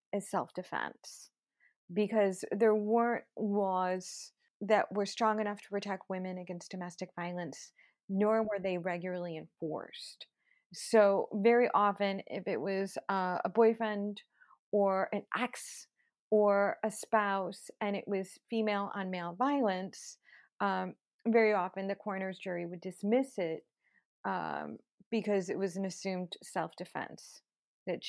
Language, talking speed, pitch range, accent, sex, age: English, 125 wpm, 185-225 Hz, American, female, 30-49